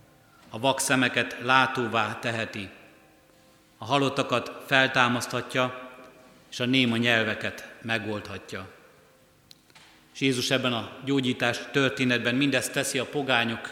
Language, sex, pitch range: Hungarian, male, 115-135 Hz